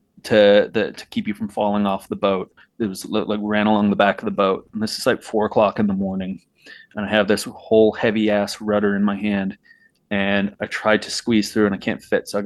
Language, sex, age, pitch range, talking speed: English, male, 30-49, 100-110 Hz, 250 wpm